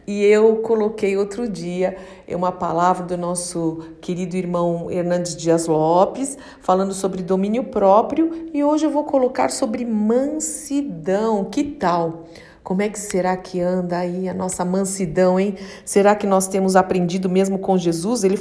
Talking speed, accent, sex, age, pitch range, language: 155 wpm, Brazilian, female, 50-69, 185-240 Hz, Portuguese